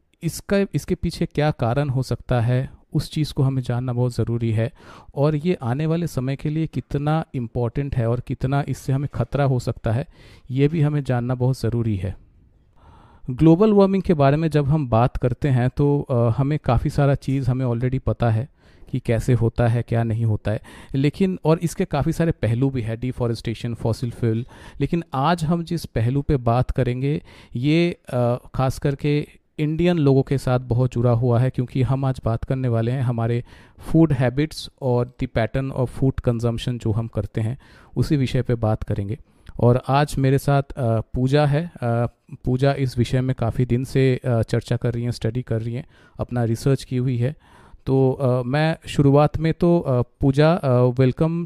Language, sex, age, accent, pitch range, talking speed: Hindi, male, 40-59, native, 120-145 Hz, 180 wpm